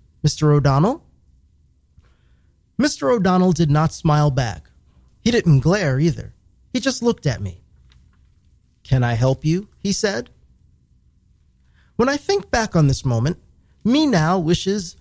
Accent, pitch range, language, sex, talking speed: American, 120-185 Hz, English, male, 130 wpm